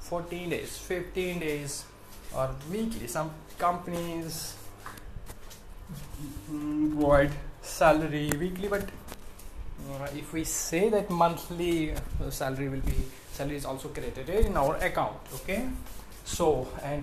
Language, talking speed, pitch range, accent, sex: English, 115 wpm, 100-170 Hz, Indian, male